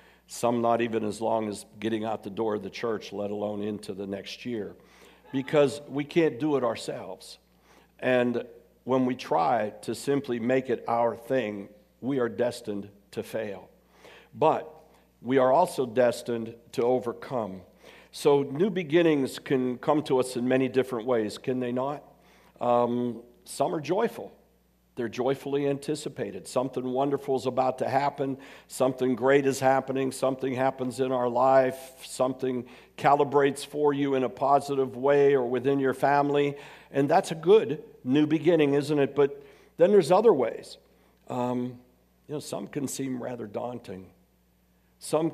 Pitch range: 120-140 Hz